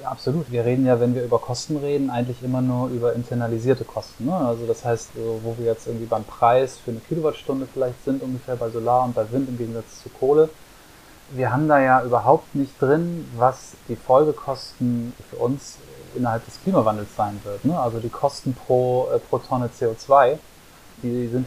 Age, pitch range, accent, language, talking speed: 30-49, 115-130 Hz, German, German, 195 wpm